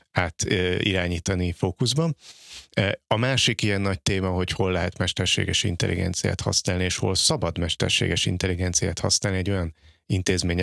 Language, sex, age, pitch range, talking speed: Hungarian, male, 30-49, 90-100 Hz, 130 wpm